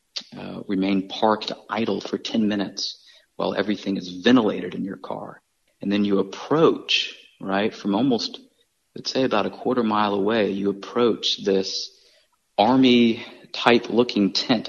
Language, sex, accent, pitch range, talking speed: English, male, American, 95-110 Hz, 140 wpm